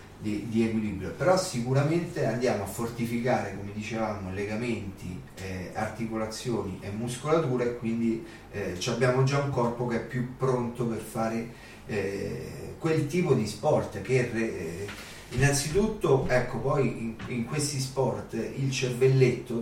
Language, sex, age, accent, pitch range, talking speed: Italian, male, 30-49, native, 115-135 Hz, 135 wpm